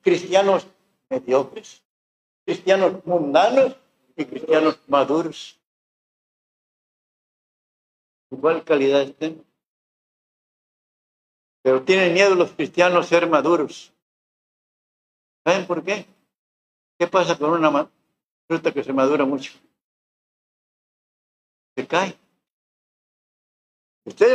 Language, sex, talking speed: Spanish, male, 75 wpm